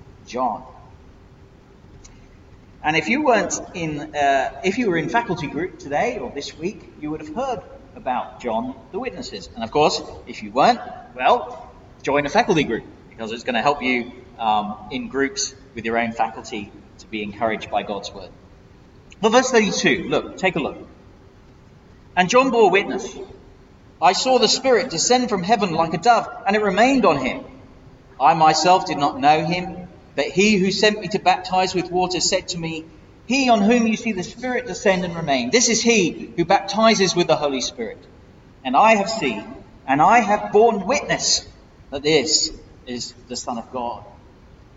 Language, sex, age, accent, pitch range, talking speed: English, male, 40-59, British, 140-225 Hz, 180 wpm